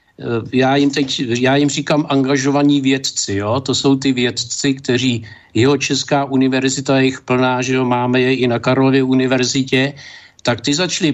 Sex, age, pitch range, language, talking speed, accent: male, 60-79, 125-150 Hz, Czech, 165 wpm, native